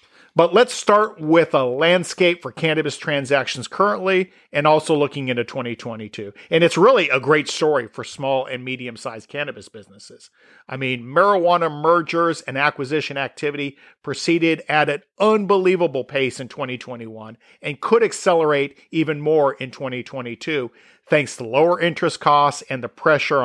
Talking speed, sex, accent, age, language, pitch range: 145 wpm, male, American, 40-59, English, 130-170 Hz